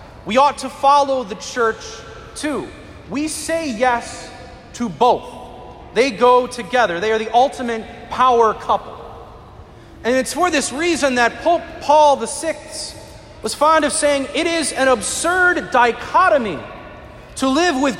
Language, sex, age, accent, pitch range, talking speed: English, male, 30-49, American, 235-300 Hz, 140 wpm